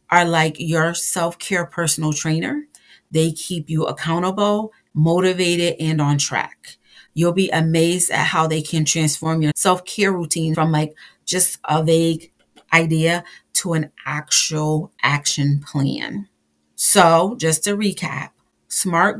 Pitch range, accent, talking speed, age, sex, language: 155-180 Hz, American, 130 wpm, 40-59, female, English